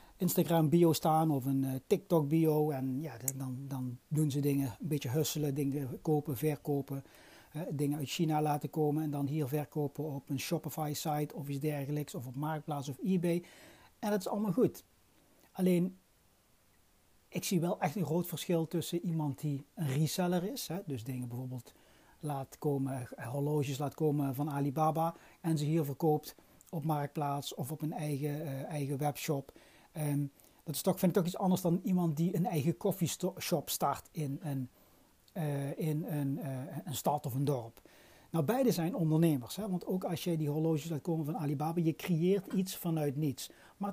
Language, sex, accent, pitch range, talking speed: Dutch, male, Dutch, 145-170 Hz, 170 wpm